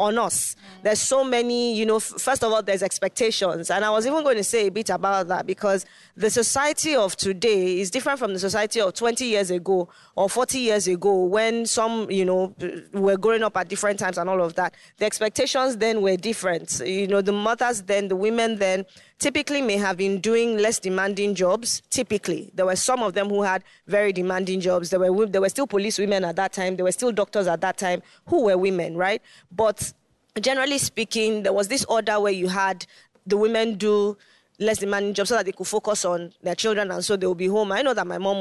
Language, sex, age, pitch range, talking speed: English, female, 20-39, 185-225 Hz, 220 wpm